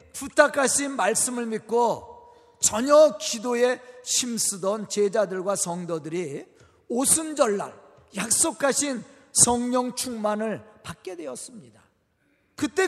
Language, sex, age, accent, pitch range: Korean, male, 40-59, native, 215-300 Hz